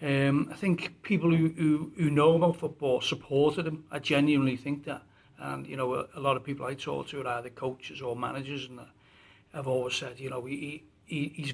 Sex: male